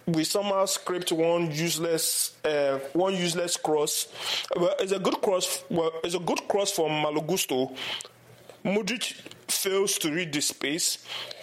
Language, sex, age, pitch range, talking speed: English, male, 20-39, 150-185 Hz, 145 wpm